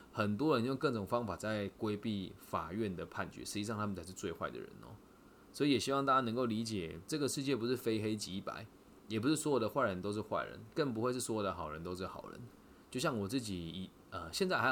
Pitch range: 95-120 Hz